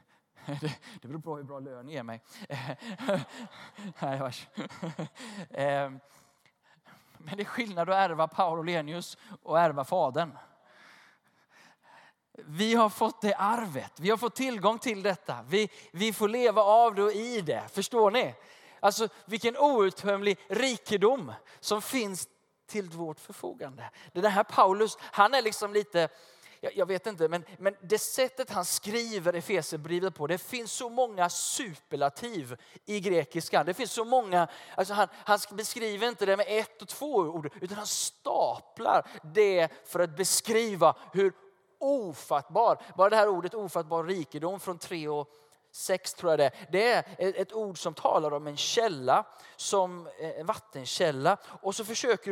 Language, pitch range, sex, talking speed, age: Swedish, 165-215 Hz, male, 150 wpm, 20-39